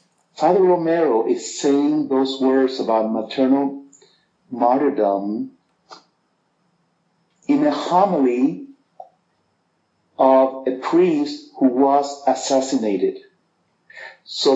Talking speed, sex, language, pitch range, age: 80 wpm, male, English, 125-190 Hz, 50-69